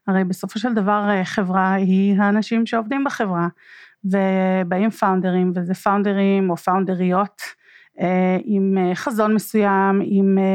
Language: Hebrew